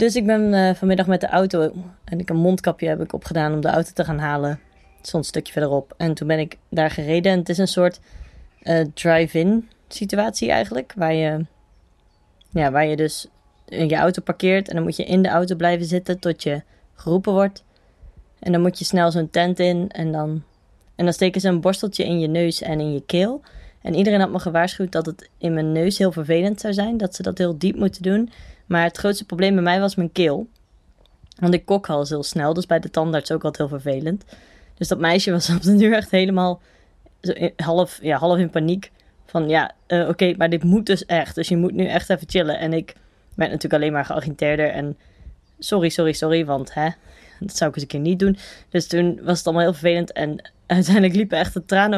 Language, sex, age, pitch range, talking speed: Dutch, female, 20-39, 155-185 Hz, 225 wpm